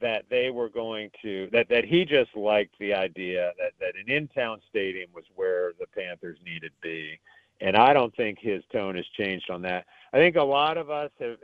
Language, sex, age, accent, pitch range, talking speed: English, male, 50-69, American, 90-135 Hz, 215 wpm